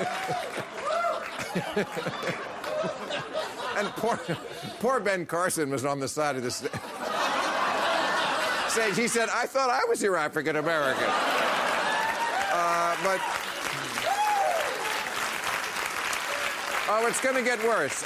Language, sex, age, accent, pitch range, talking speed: English, male, 50-69, American, 130-180 Hz, 95 wpm